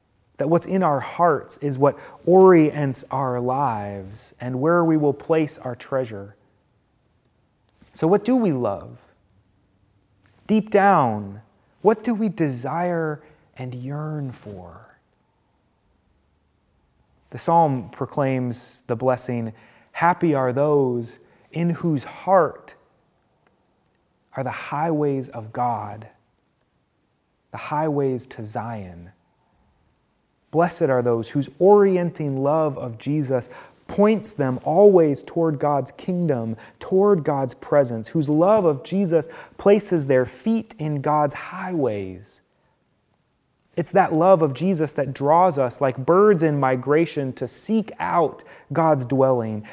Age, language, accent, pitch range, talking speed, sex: 30-49, English, American, 120-170 Hz, 115 wpm, male